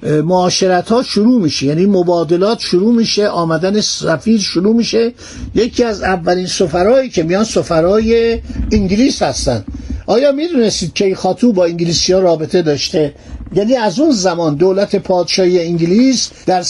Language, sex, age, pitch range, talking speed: Persian, male, 60-79, 170-225 Hz, 135 wpm